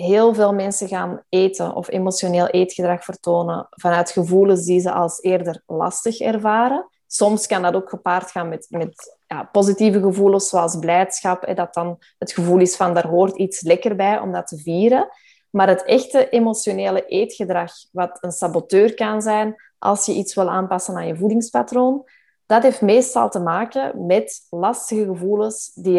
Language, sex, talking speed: Dutch, female, 165 wpm